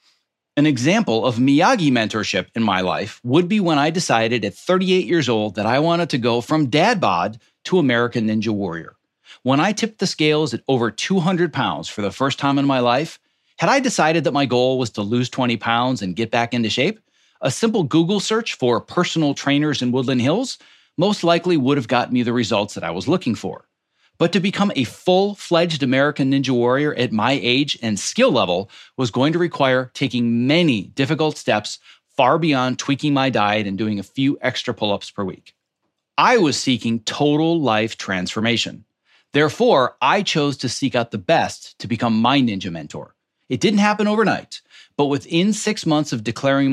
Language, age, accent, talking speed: English, 40-59, American, 190 wpm